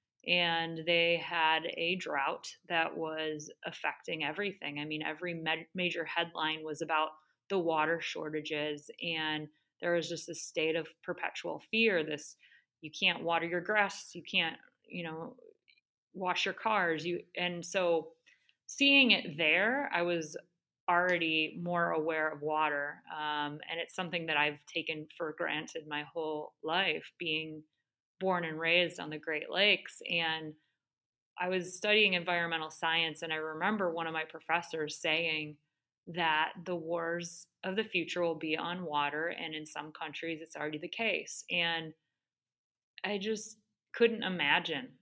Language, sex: English, female